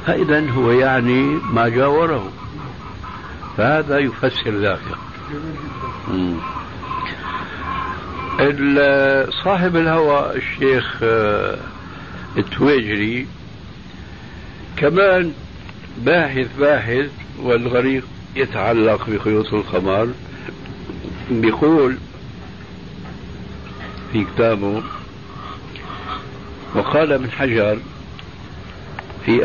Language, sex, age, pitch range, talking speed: Arabic, male, 60-79, 90-130 Hz, 55 wpm